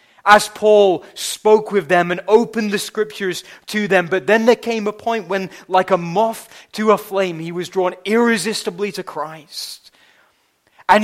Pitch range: 155-200 Hz